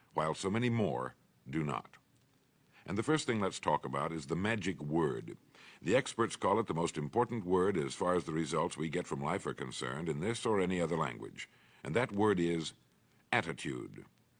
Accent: American